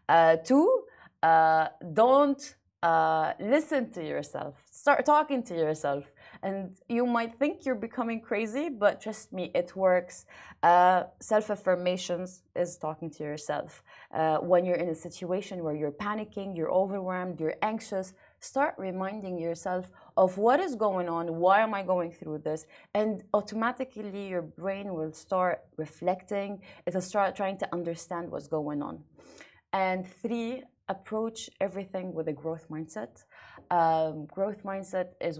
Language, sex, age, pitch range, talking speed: Arabic, female, 20-39, 160-205 Hz, 140 wpm